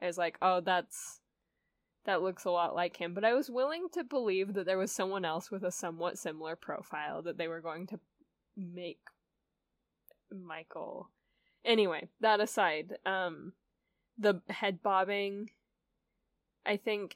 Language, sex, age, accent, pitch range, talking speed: English, female, 10-29, American, 170-205 Hz, 145 wpm